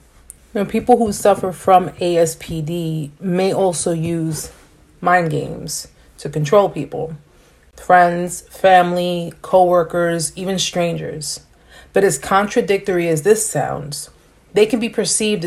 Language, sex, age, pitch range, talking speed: English, female, 30-49, 160-205 Hz, 120 wpm